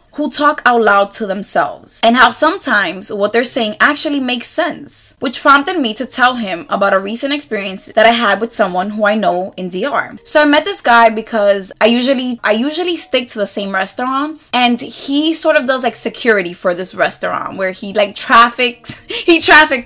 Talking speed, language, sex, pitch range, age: 200 wpm, English, female, 210-280 Hz, 20-39